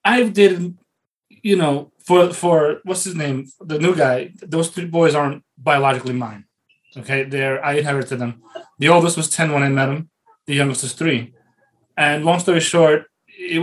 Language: English